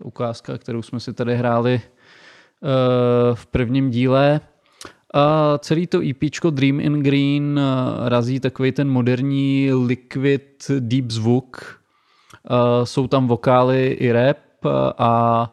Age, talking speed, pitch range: 20-39, 105 wpm, 120-130 Hz